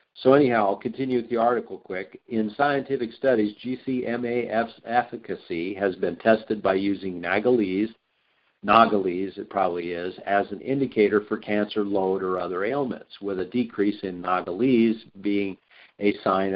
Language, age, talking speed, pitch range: English, 50-69, 145 wpm, 95-115 Hz